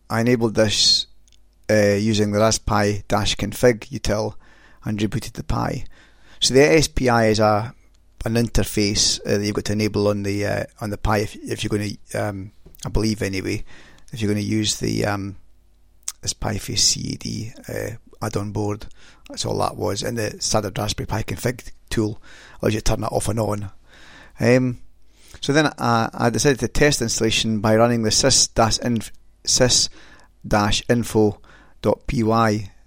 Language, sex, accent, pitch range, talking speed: English, male, British, 100-115 Hz, 160 wpm